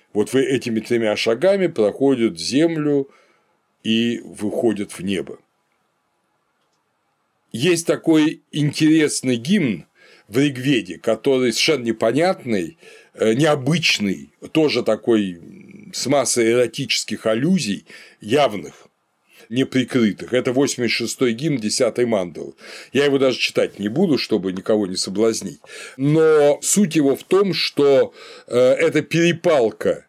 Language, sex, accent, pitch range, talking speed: Russian, male, native, 115-160 Hz, 105 wpm